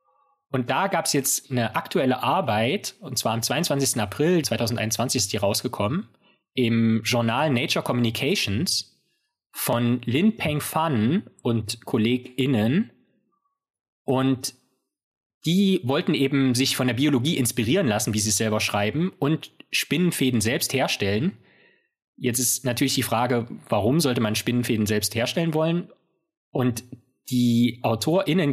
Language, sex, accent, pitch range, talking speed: German, male, German, 115-145 Hz, 130 wpm